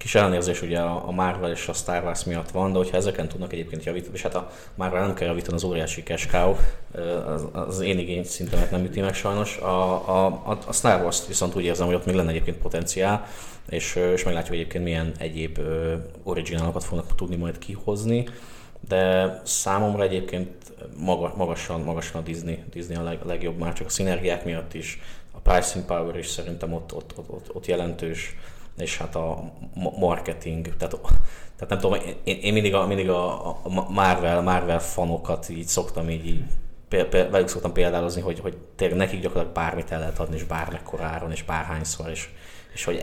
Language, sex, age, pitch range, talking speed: Hungarian, male, 20-39, 85-95 Hz, 190 wpm